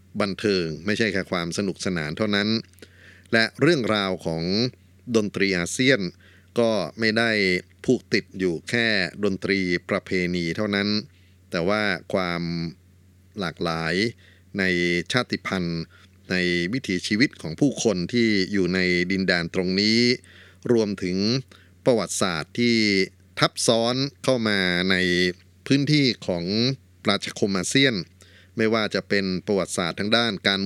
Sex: male